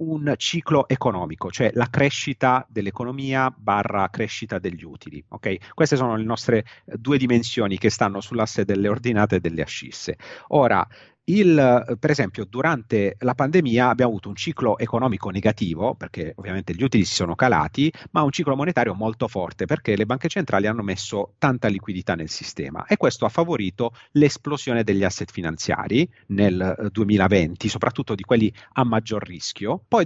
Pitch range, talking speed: 100-135 Hz, 160 wpm